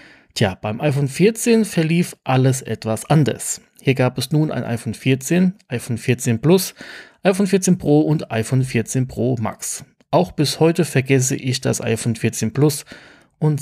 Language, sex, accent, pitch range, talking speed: German, male, German, 115-150 Hz, 160 wpm